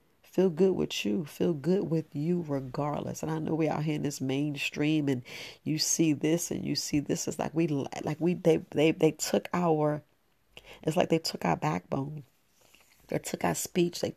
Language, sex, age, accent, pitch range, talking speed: English, female, 40-59, American, 140-170 Hz, 200 wpm